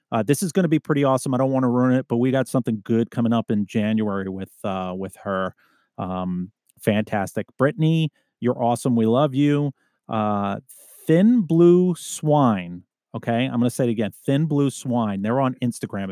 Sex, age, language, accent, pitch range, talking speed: male, 30-49, English, American, 105-130 Hz, 195 wpm